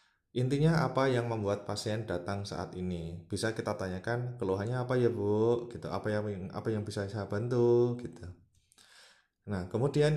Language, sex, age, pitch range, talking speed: Indonesian, male, 20-39, 105-125 Hz, 155 wpm